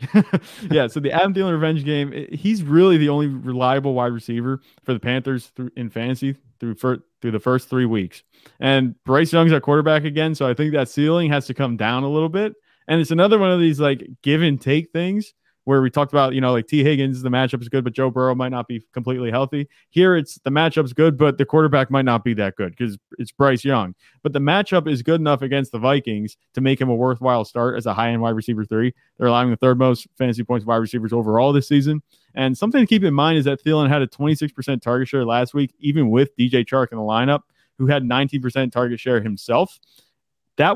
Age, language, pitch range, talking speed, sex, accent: 20-39, English, 120-155 Hz, 230 wpm, male, American